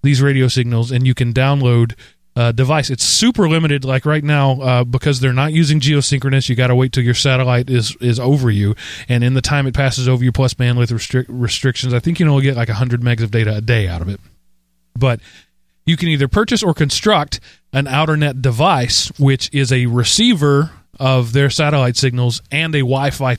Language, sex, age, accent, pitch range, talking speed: English, male, 30-49, American, 115-140 Hz, 210 wpm